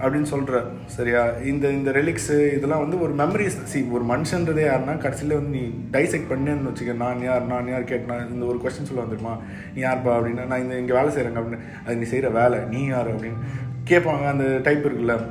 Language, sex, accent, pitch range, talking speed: Tamil, male, native, 120-150 Hz, 190 wpm